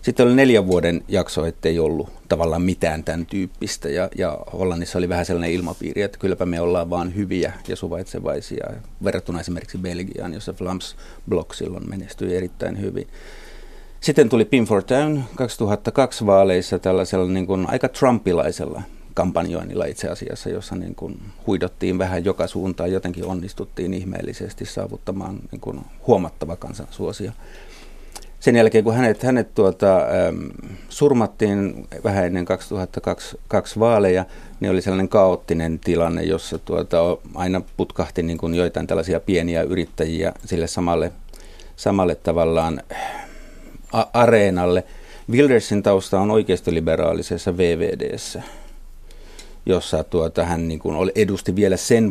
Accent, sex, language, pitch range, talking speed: native, male, Finnish, 85-100 Hz, 130 wpm